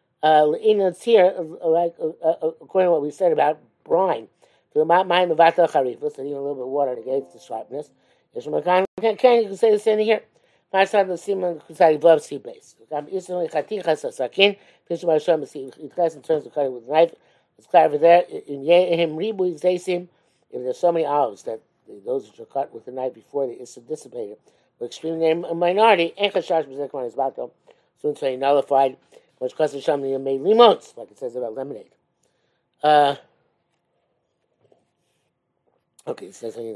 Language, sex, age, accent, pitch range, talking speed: English, male, 50-69, American, 145-190 Hz, 125 wpm